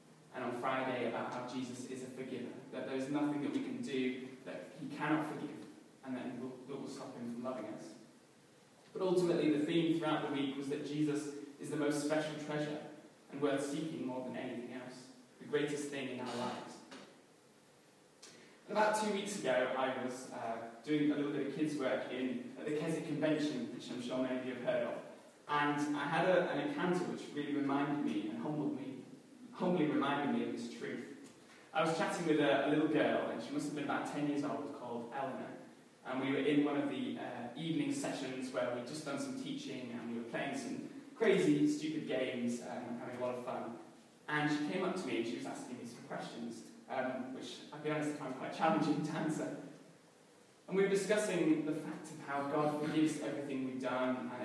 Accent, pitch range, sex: British, 130-155 Hz, male